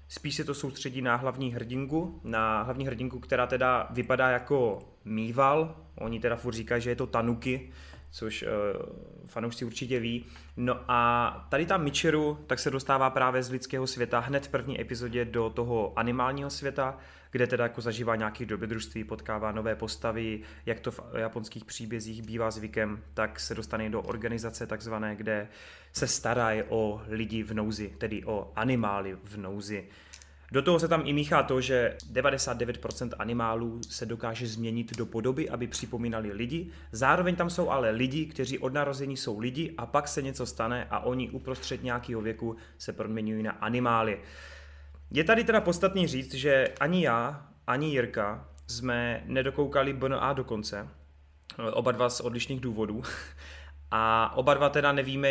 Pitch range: 110-135 Hz